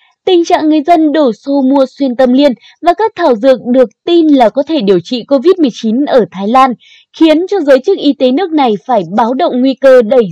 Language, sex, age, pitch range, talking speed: Vietnamese, female, 20-39, 240-325 Hz, 225 wpm